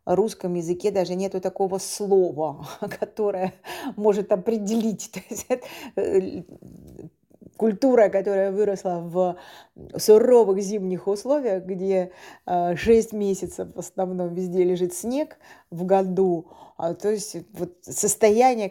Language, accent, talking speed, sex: Russian, native, 105 wpm, female